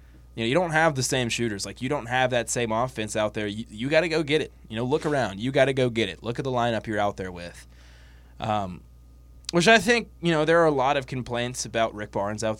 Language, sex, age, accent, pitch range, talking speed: English, male, 20-39, American, 100-135 Hz, 275 wpm